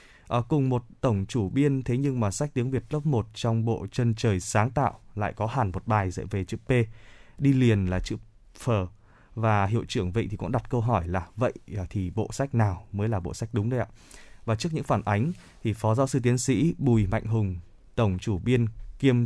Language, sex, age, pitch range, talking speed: Vietnamese, male, 20-39, 105-125 Hz, 230 wpm